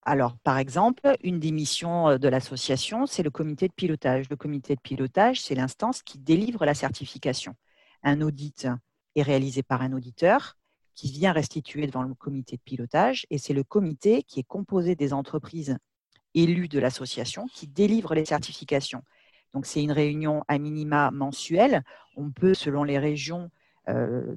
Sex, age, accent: female, 50-69, French